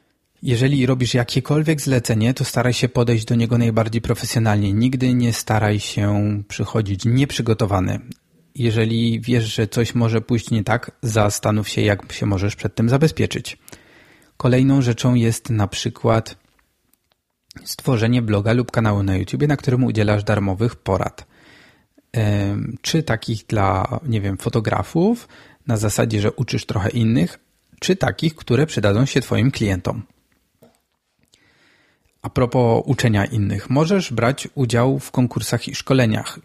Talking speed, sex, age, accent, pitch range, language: 130 wpm, male, 30-49, native, 110-130 Hz, Polish